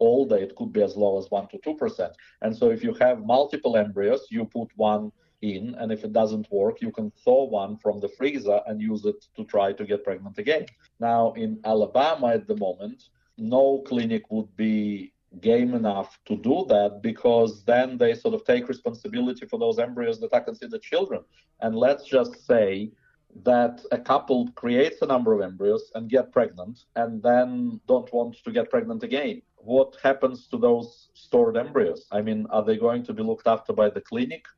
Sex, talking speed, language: male, 195 wpm, English